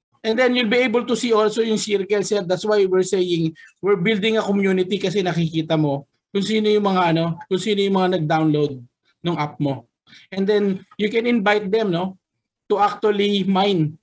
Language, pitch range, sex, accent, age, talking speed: Filipino, 160-220 Hz, male, native, 20-39, 185 wpm